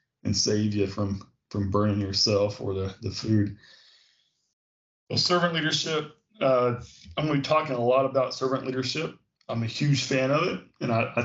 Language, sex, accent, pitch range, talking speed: English, male, American, 105-125 Hz, 170 wpm